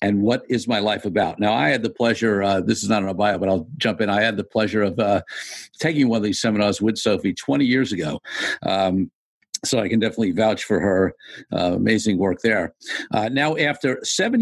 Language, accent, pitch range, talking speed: English, American, 105-130 Hz, 225 wpm